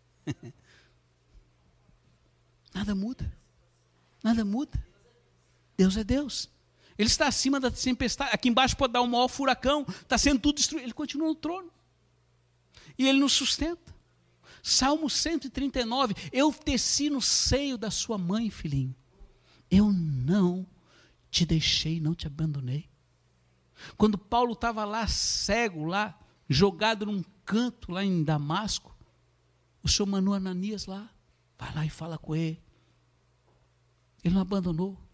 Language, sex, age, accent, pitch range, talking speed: Portuguese, male, 60-79, Brazilian, 155-255 Hz, 125 wpm